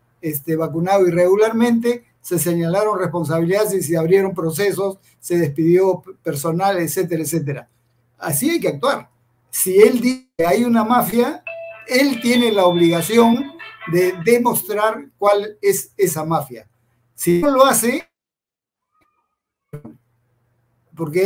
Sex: male